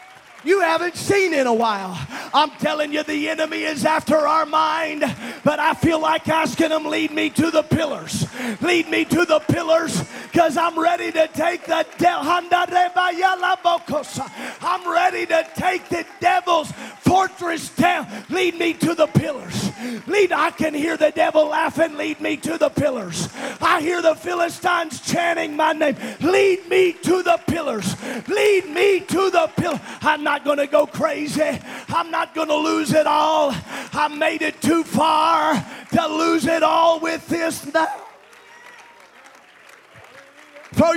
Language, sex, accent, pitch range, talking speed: English, male, American, 295-345 Hz, 150 wpm